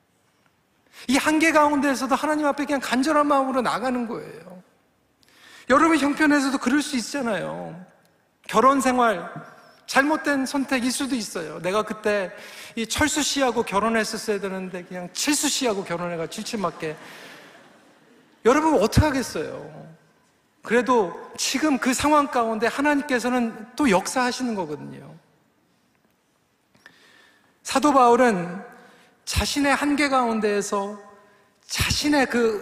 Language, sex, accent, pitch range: Korean, male, native, 215-285 Hz